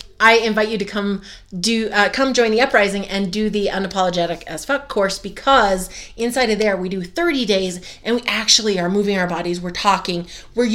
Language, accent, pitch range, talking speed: English, American, 185-235 Hz, 200 wpm